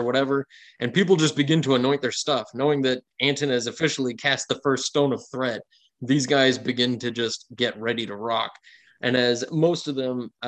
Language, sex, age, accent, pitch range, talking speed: English, male, 20-39, American, 115-140 Hz, 195 wpm